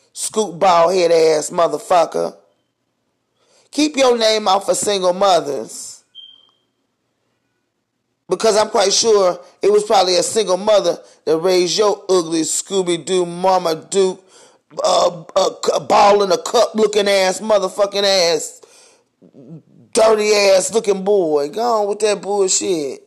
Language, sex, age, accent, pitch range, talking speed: English, male, 30-49, American, 190-255 Hz, 120 wpm